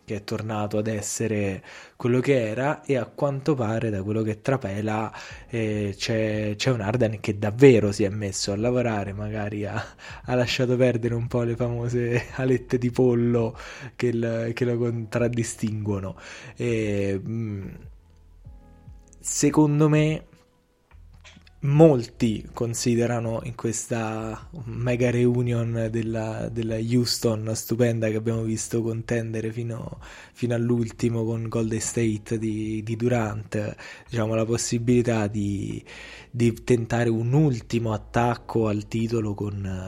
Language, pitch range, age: Italian, 105-120 Hz, 20-39